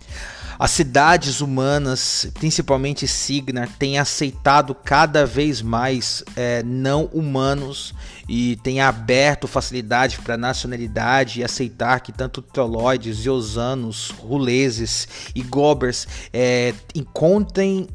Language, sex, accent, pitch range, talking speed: Portuguese, male, Brazilian, 120-145 Hz, 100 wpm